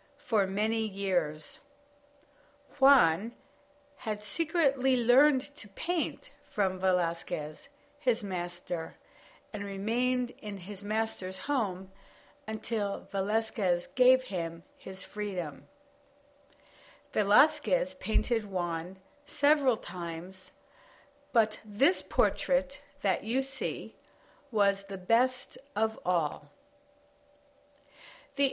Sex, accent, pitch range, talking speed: female, American, 195-280 Hz, 90 wpm